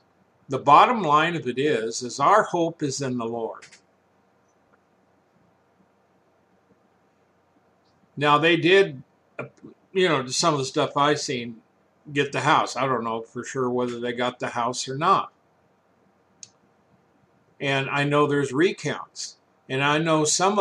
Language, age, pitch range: English, 60-79, 130-160 Hz